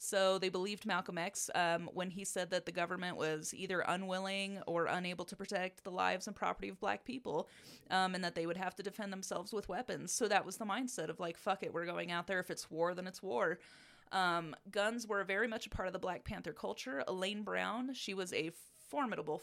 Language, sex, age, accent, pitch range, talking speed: English, female, 20-39, American, 175-225 Hz, 230 wpm